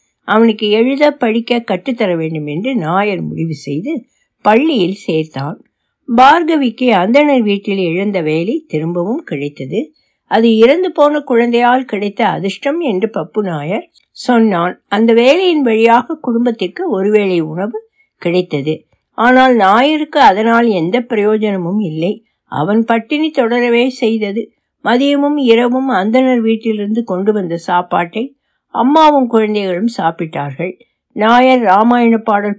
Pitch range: 185-255 Hz